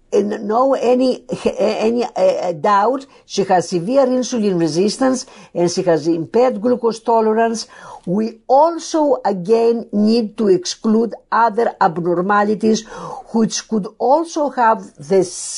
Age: 50-69